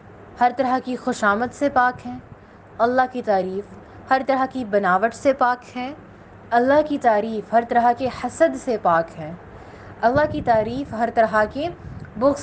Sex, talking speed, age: female, 165 wpm, 20-39